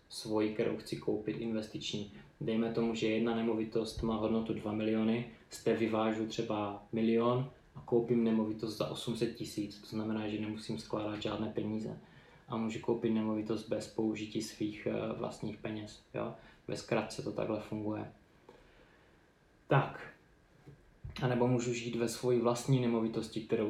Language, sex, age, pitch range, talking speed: Czech, male, 20-39, 110-115 Hz, 140 wpm